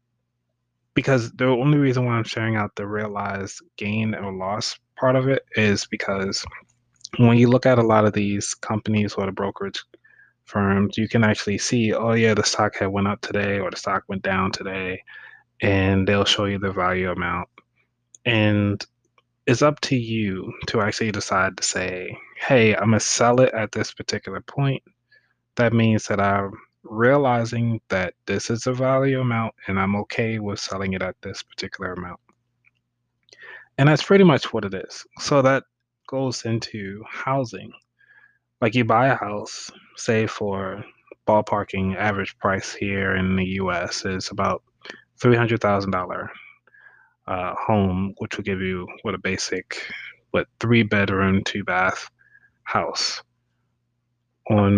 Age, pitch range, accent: 20-39, 100-120 Hz, American